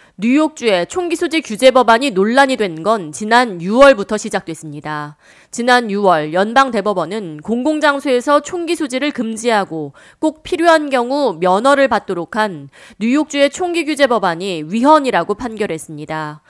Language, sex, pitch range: Korean, female, 190-280 Hz